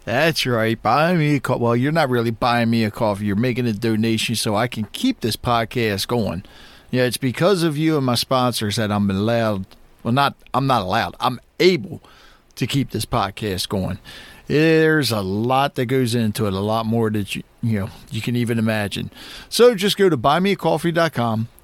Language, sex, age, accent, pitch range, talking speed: English, male, 40-59, American, 115-160 Hz, 200 wpm